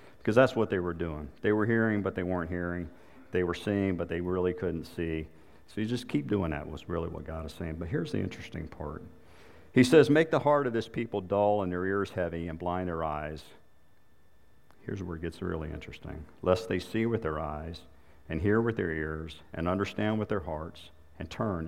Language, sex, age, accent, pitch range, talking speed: English, male, 50-69, American, 75-95 Hz, 220 wpm